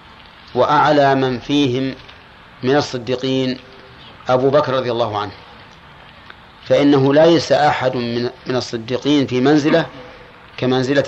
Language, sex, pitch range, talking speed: Arabic, male, 120-150 Hz, 95 wpm